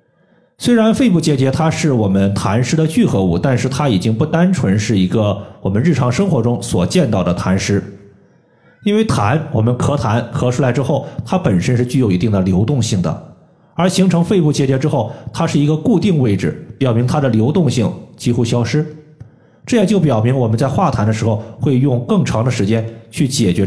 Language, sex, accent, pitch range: Chinese, male, native, 115-155 Hz